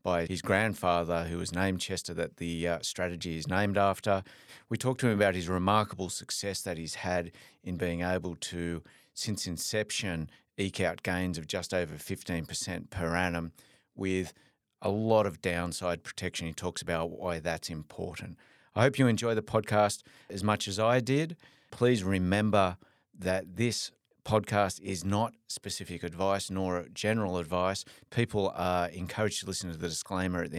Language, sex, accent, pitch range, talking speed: English, male, Australian, 85-100 Hz, 170 wpm